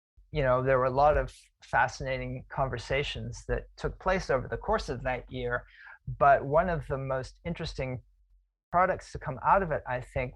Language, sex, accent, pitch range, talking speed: English, male, American, 120-140 Hz, 185 wpm